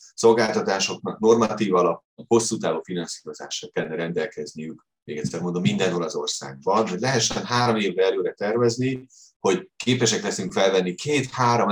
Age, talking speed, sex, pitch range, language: 30-49, 130 wpm, male, 100-125 Hz, Hungarian